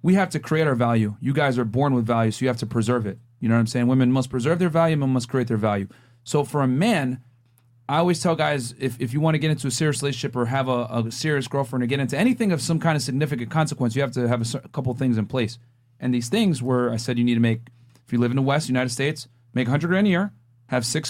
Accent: American